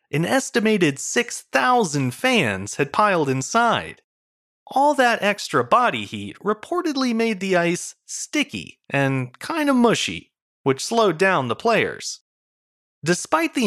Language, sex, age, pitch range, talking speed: English, male, 30-49, 145-240 Hz, 125 wpm